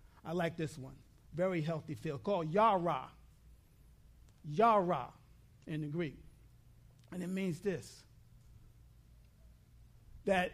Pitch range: 135-190 Hz